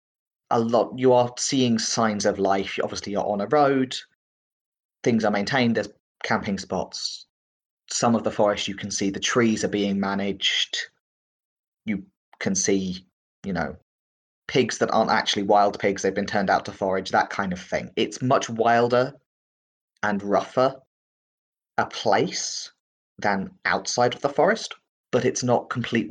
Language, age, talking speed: English, 30-49, 155 wpm